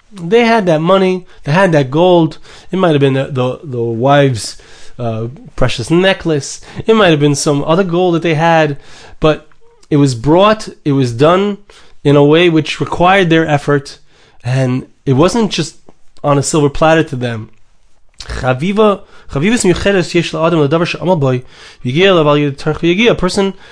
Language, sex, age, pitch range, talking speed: English, male, 20-39, 135-180 Hz, 140 wpm